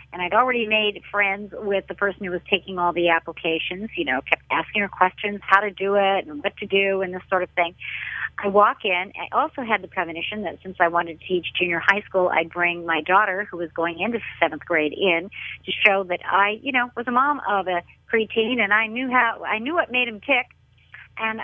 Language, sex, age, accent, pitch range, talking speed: English, female, 50-69, American, 185-245 Hz, 235 wpm